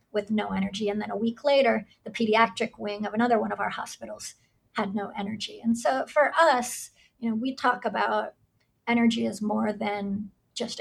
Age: 30-49